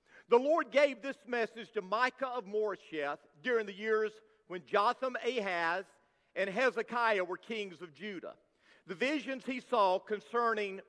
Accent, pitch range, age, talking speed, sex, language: American, 220-290 Hz, 50-69, 145 wpm, male, English